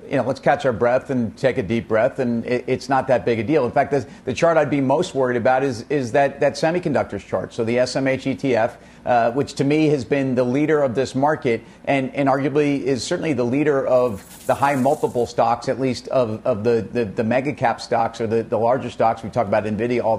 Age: 50-69